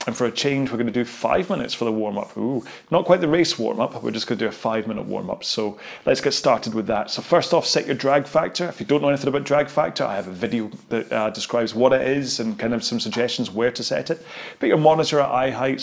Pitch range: 115-155 Hz